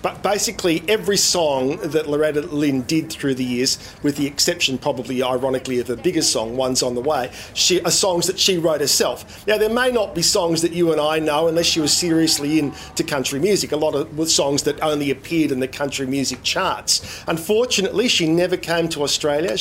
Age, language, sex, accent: 40-59, English, male, Australian